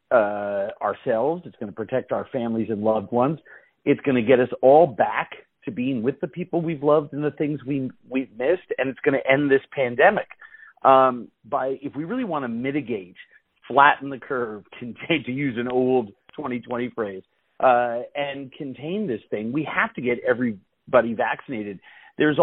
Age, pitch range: 40-59, 115-145 Hz